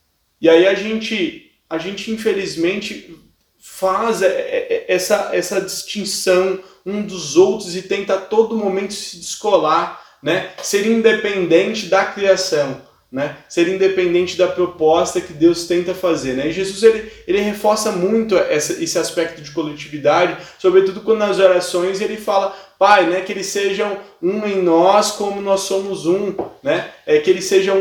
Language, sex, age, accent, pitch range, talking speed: Portuguese, male, 20-39, Brazilian, 170-195 Hz, 150 wpm